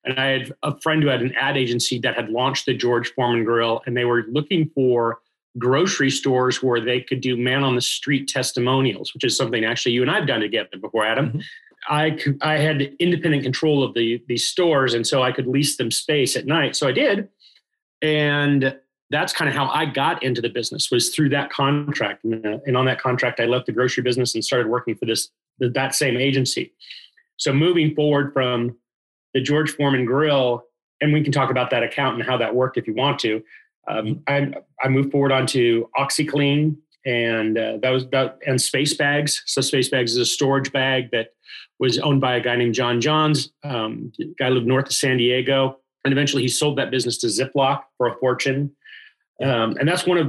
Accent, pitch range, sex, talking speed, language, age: American, 125-145 Hz, male, 210 wpm, English, 40-59